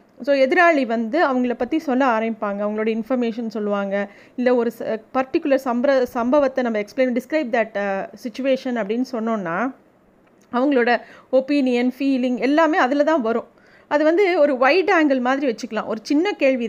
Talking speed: 145 wpm